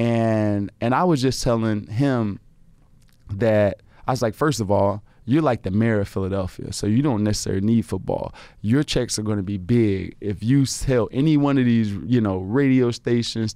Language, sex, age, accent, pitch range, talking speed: English, male, 20-39, American, 105-130 Hz, 190 wpm